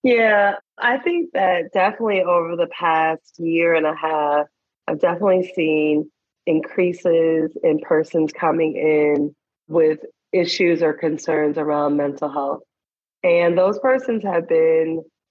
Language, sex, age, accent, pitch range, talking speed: English, female, 30-49, American, 155-185 Hz, 125 wpm